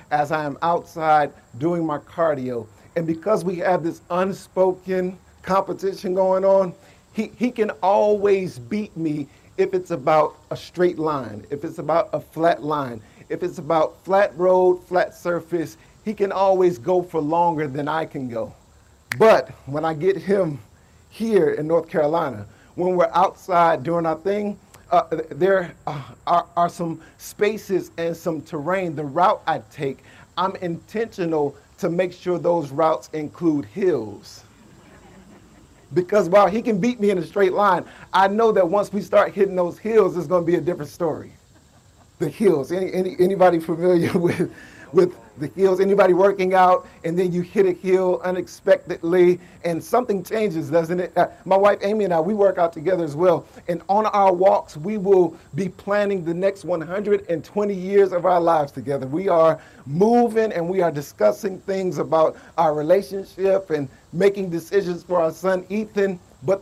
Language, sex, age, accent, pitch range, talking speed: English, male, 50-69, American, 160-195 Hz, 170 wpm